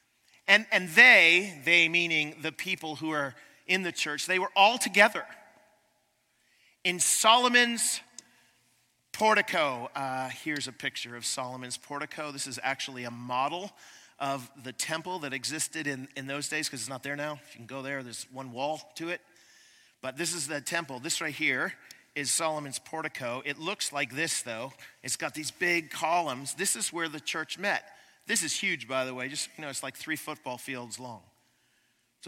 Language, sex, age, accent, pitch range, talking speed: English, male, 40-59, American, 140-190 Hz, 180 wpm